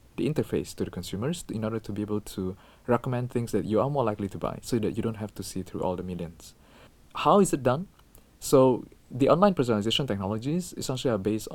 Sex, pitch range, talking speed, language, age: male, 100-120 Hz, 230 wpm, English, 20-39